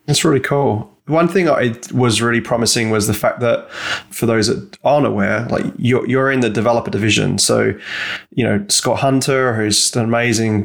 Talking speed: 190 wpm